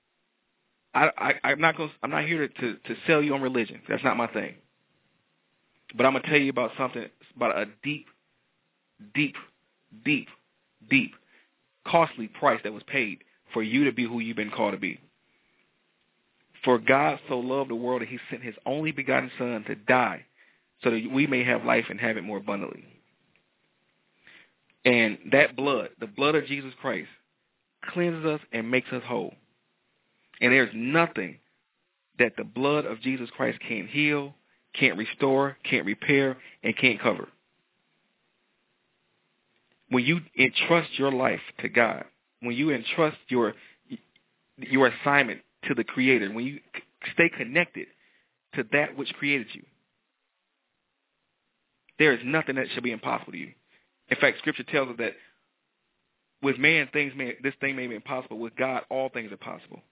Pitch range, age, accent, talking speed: 125-145 Hz, 30-49, American, 160 wpm